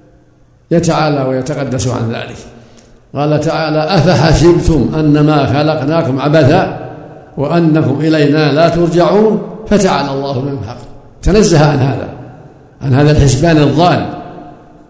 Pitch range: 135-160 Hz